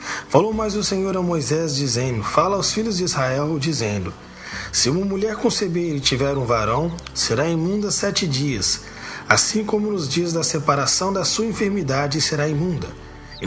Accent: Brazilian